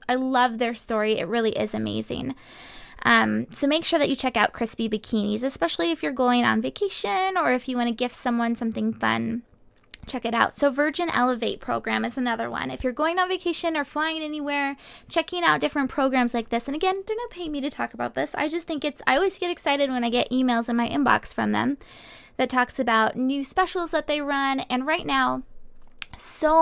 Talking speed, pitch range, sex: 215 wpm, 225-305 Hz, female